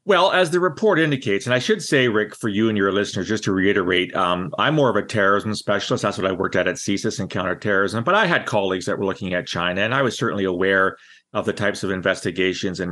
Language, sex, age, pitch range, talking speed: English, male, 40-59, 95-125 Hz, 250 wpm